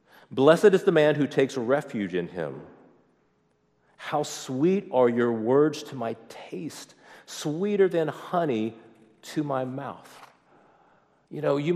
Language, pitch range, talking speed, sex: English, 115-150 Hz, 135 wpm, male